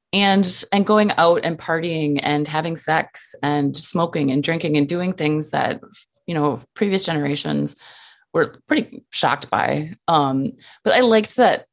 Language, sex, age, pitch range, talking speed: English, female, 30-49, 145-220 Hz, 155 wpm